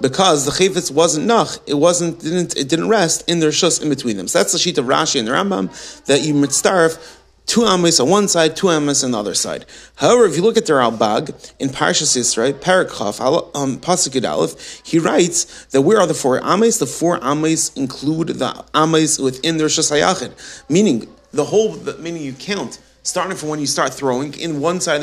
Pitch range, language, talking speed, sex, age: 140-180 Hz, English, 200 wpm, male, 30-49